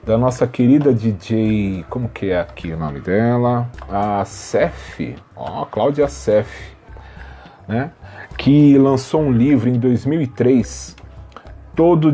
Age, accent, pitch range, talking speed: 40-59, Brazilian, 95-130 Hz, 120 wpm